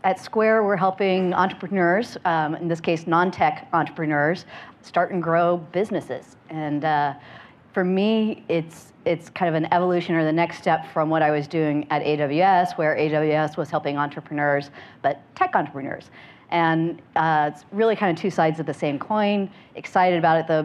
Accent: American